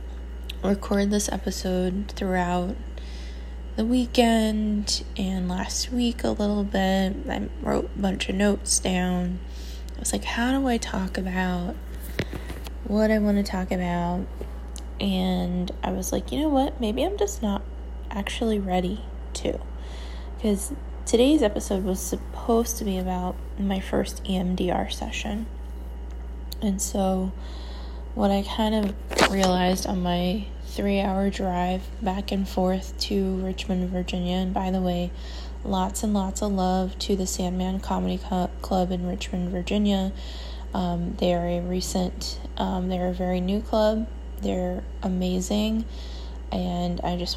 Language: English